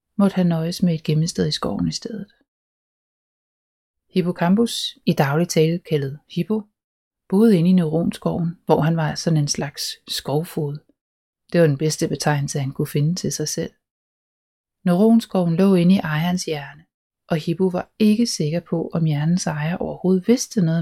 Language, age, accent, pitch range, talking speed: Danish, 30-49, native, 155-190 Hz, 160 wpm